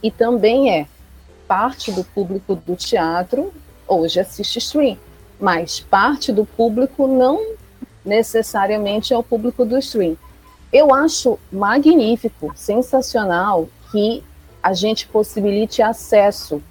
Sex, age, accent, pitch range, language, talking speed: female, 40-59, Brazilian, 185-250 Hz, Portuguese, 110 wpm